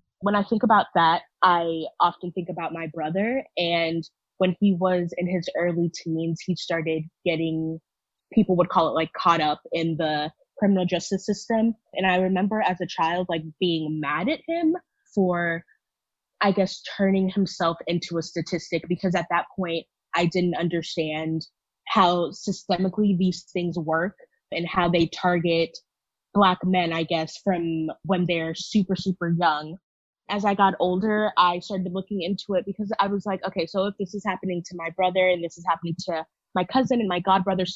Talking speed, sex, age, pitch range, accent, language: 175 wpm, female, 10-29, 165-190 Hz, American, English